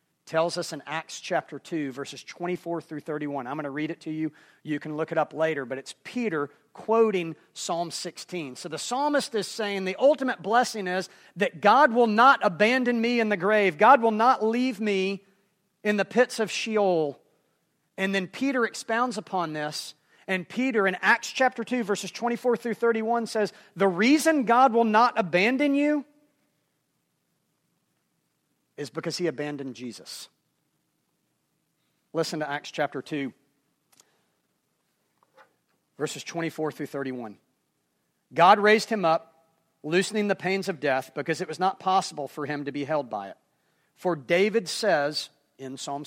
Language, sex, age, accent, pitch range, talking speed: English, male, 40-59, American, 150-215 Hz, 160 wpm